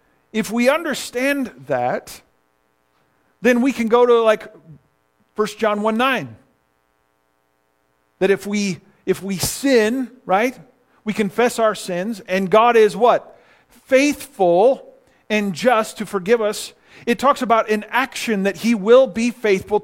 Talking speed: 140 wpm